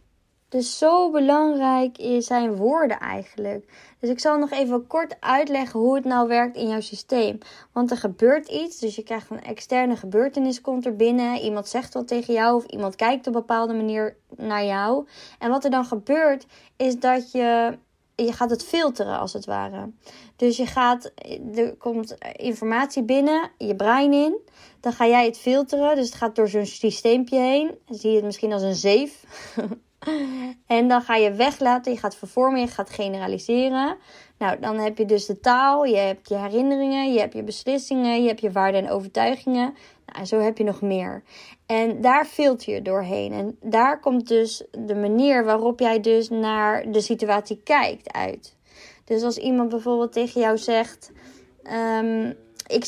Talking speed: 180 wpm